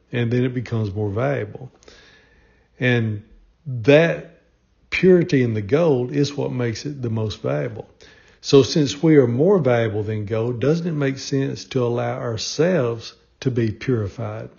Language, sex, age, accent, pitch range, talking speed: English, male, 60-79, American, 115-145 Hz, 150 wpm